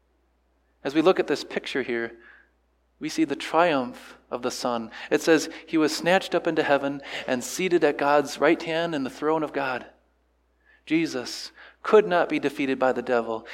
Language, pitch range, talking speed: English, 120-170 Hz, 180 wpm